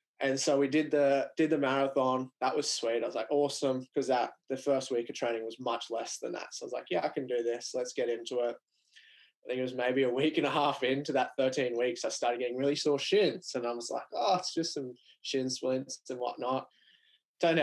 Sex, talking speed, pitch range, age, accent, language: male, 250 wpm, 120-140 Hz, 20-39, Australian, English